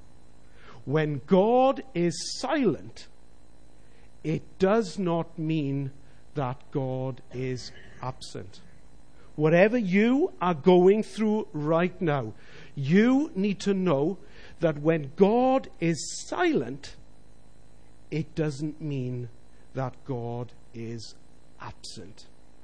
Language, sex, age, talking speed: English, male, 50-69, 95 wpm